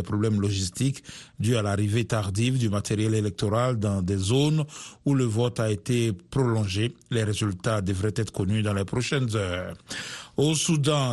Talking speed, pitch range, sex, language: 160 wpm, 110-135 Hz, male, French